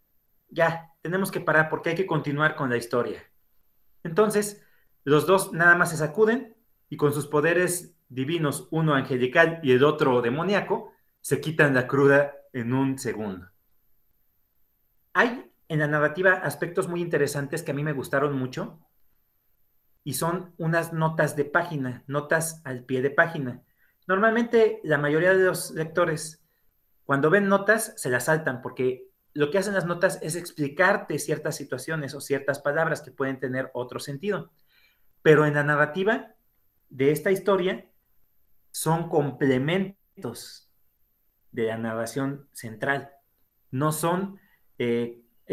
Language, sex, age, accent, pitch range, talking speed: Spanish, male, 40-59, Mexican, 130-175 Hz, 140 wpm